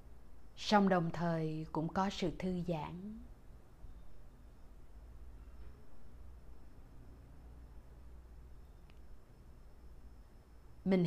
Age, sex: 20-39, female